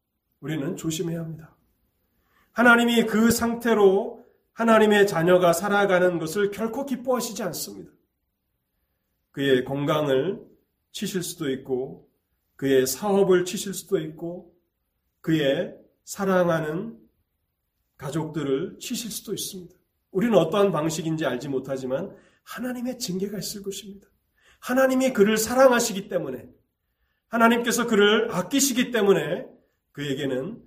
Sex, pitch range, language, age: male, 130-195 Hz, Korean, 40-59